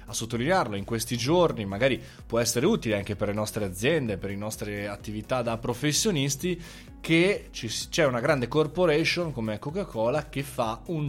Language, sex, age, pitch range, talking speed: Italian, male, 20-39, 110-150 Hz, 160 wpm